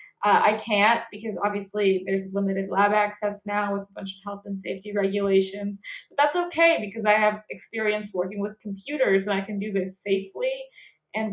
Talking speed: 185 wpm